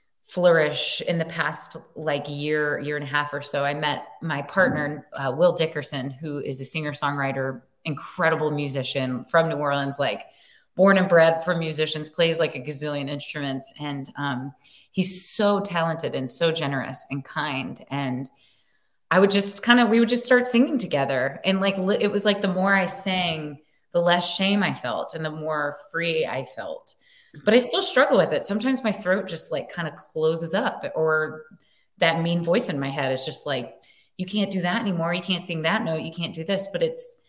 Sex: female